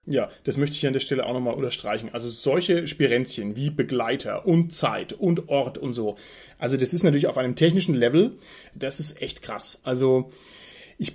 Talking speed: 190 wpm